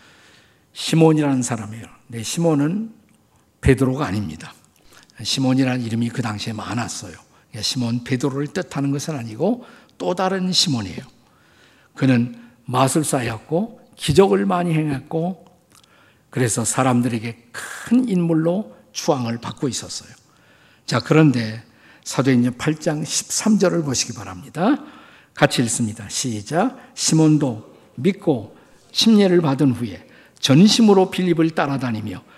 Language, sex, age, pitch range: Korean, male, 50-69, 120-175 Hz